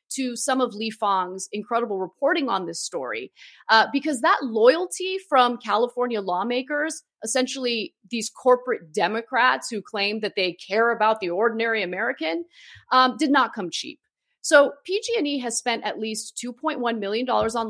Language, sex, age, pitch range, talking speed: English, female, 30-49, 205-280 Hz, 150 wpm